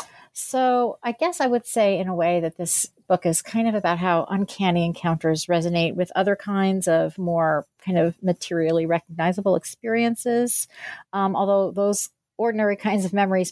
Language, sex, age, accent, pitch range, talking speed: English, female, 40-59, American, 170-210 Hz, 165 wpm